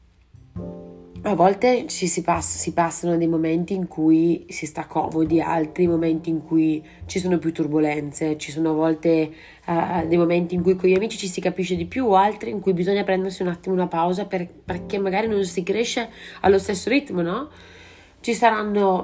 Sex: female